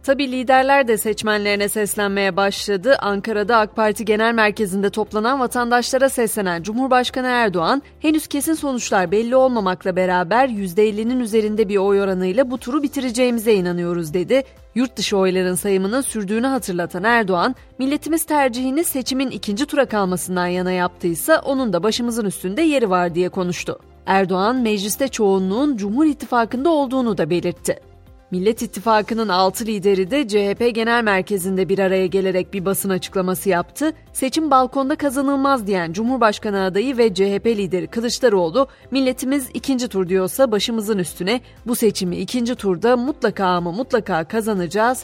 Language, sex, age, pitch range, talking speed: Turkish, female, 30-49, 190-260 Hz, 135 wpm